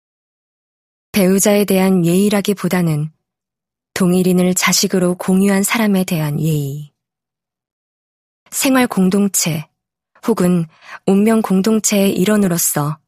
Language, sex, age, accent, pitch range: Korean, female, 20-39, native, 160-200 Hz